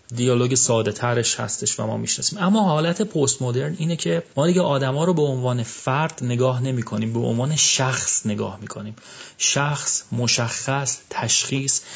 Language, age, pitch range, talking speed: Persian, 30-49, 115-145 Hz, 145 wpm